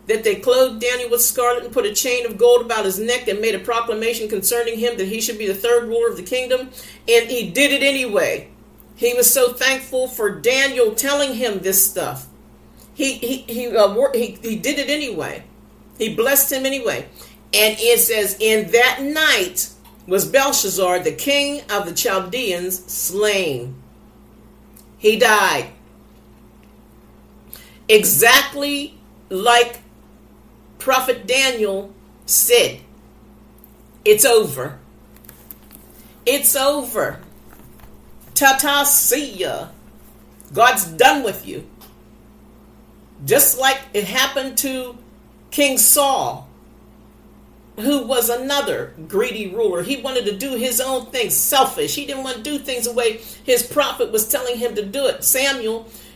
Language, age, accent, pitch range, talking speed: English, 50-69, American, 230-280 Hz, 135 wpm